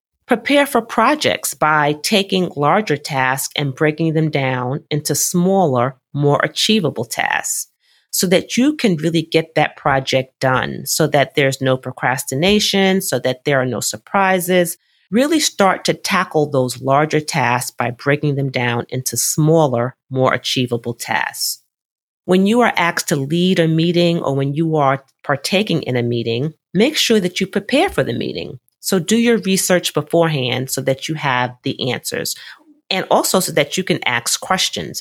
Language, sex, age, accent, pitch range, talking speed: English, female, 40-59, American, 135-190 Hz, 165 wpm